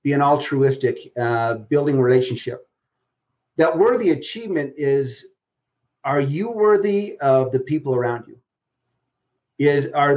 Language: English